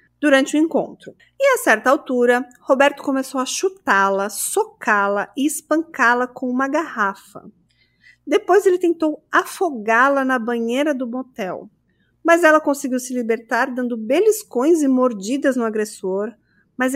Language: Portuguese